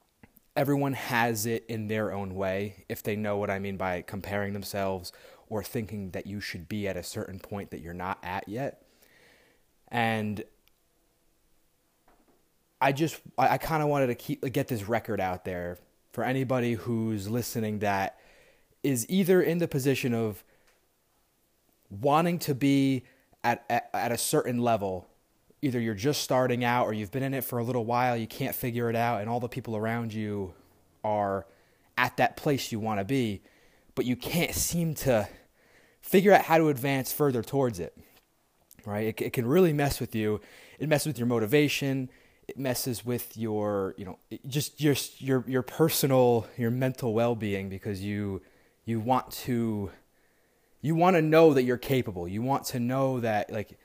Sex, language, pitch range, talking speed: male, English, 105-135 Hz, 175 wpm